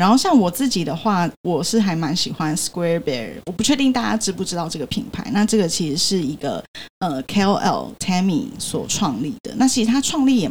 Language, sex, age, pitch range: Chinese, female, 10-29, 175-230 Hz